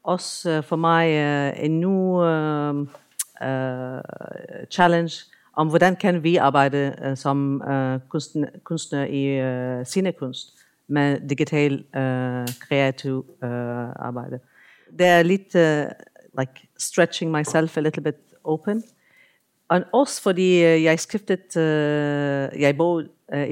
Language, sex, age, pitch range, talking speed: Danish, female, 50-69, 140-175 Hz, 130 wpm